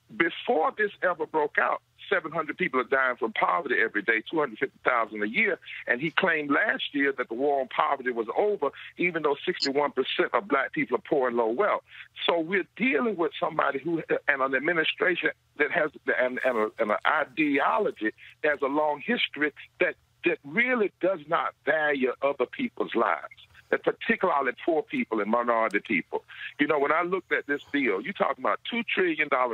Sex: male